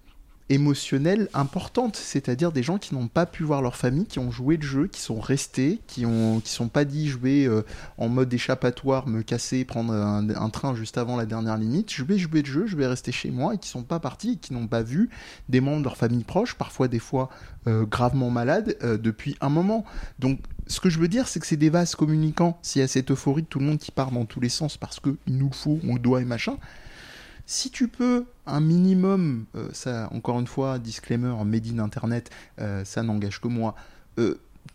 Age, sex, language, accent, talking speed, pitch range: 20-39, male, French, French, 235 wpm, 120-155 Hz